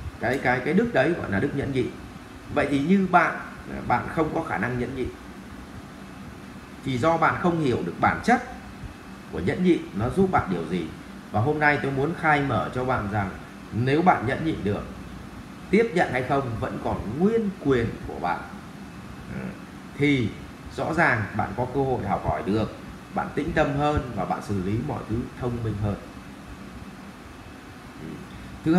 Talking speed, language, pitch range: 180 wpm, Vietnamese, 105-155 Hz